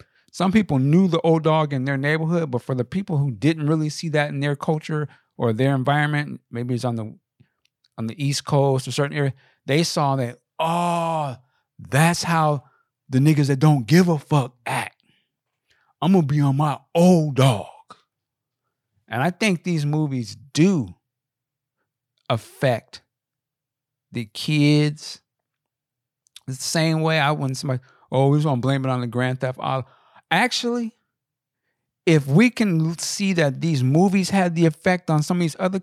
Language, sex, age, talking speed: English, male, 50-69, 165 wpm